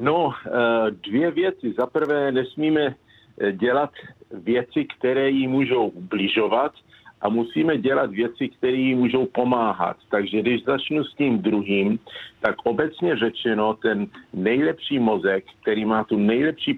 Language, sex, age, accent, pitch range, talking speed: Czech, male, 50-69, native, 110-135 Hz, 125 wpm